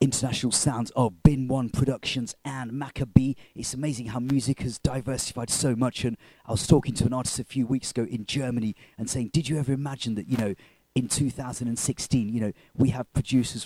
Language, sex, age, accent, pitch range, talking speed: English, male, 30-49, British, 110-135 Hz, 200 wpm